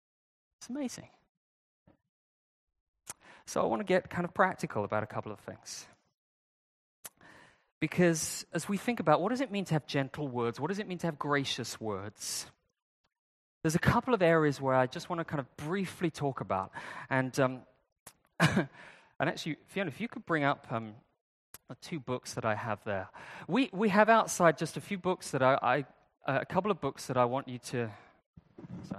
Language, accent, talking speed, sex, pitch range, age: English, British, 190 wpm, male, 120-175 Hz, 30-49